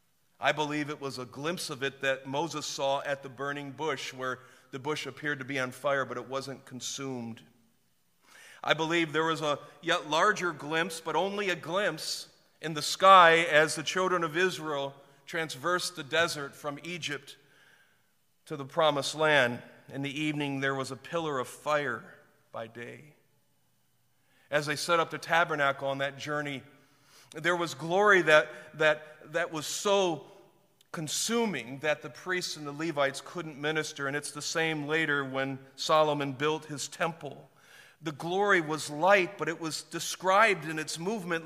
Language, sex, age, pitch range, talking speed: English, male, 40-59, 135-165 Hz, 165 wpm